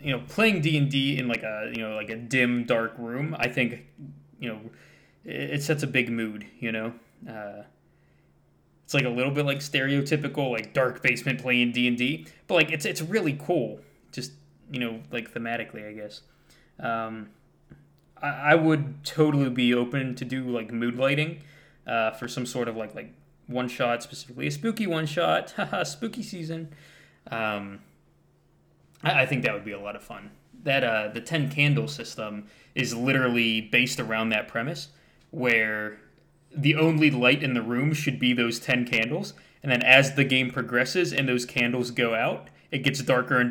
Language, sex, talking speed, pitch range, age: English, male, 180 wpm, 115-140 Hz, 20-39